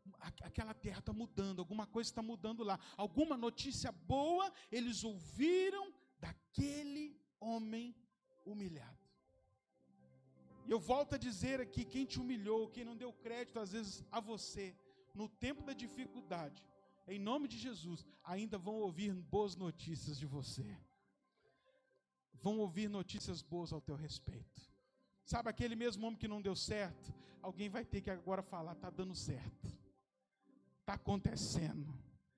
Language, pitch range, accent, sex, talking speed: Portuguese, 190-290 Hz, Brazilian, male, 140 wpm